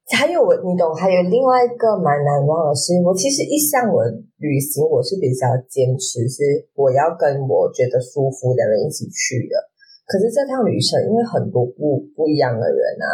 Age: 20-39